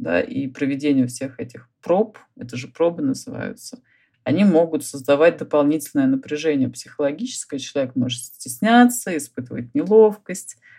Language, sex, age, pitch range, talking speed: Russian, female, 30-49, 125-160 Hz, 115 wpm